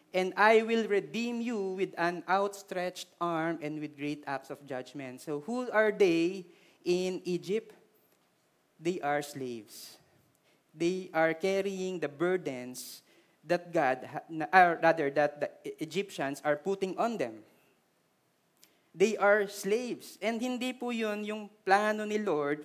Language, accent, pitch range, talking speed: Filipino, native, 170-215 Hz, 135 wpm